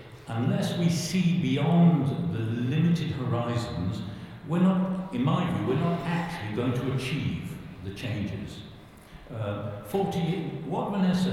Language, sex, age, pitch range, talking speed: English, male, 60-79, 125-170 Hz, 120 wpm